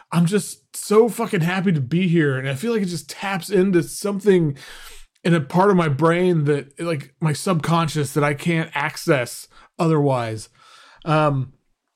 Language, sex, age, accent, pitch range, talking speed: English, male, 30-49, American, 150-190 Hz, 165 wpm